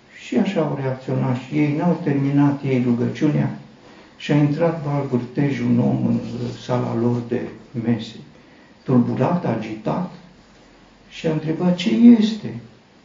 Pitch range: 120-180 Hz